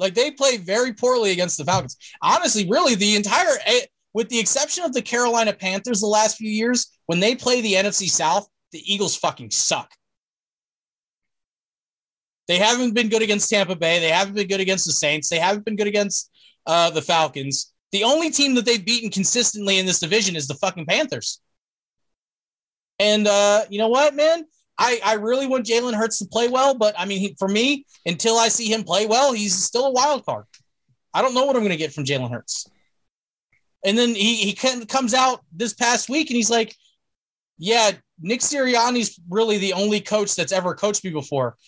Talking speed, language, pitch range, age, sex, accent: 195 wpm, English, 185-240 Hz, 30-49, male, American